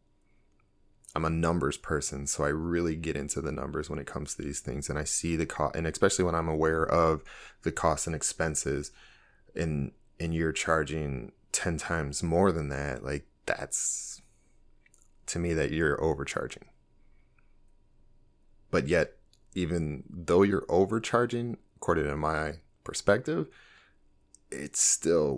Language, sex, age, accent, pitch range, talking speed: English, male, 30-49, American, 70-85 Hz, 145 wpm